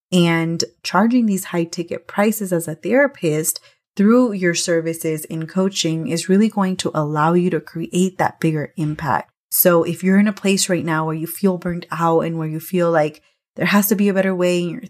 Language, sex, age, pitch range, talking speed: English, female, 20-39, 165-185 Hz, 210 wpm